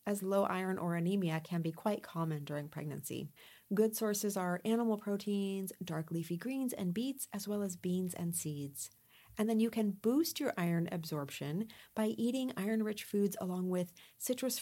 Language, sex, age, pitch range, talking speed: English, female, 40-59, 170-225 Hz, 175 wpm